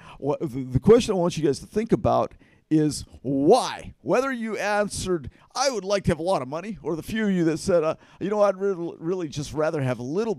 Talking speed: 230 wpm